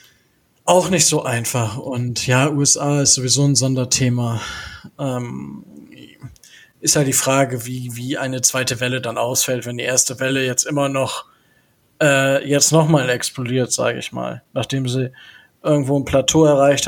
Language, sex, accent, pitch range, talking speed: German, male, German, 130-160 Hz, 160 wpm